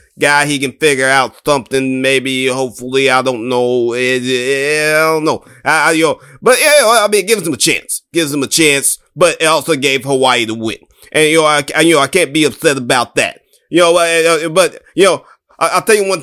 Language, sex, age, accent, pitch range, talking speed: English, male, 30-49, American, 140-165 Hz, 245 wpm